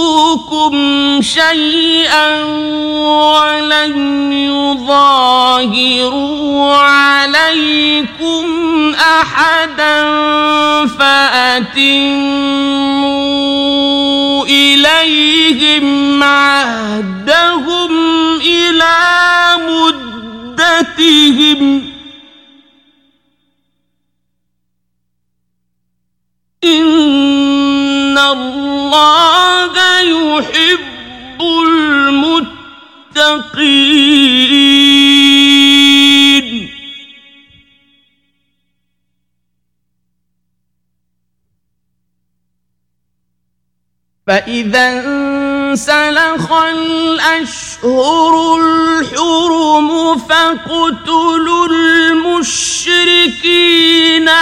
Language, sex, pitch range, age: Persian, male, 275-320 Hz, 50-69